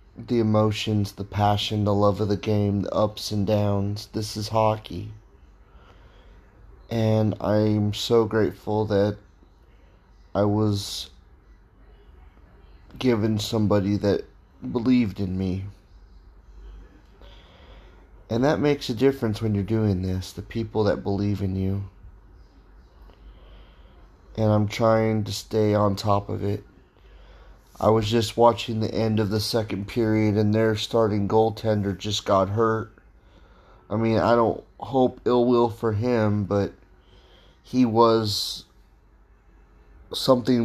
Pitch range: 95-110 Hz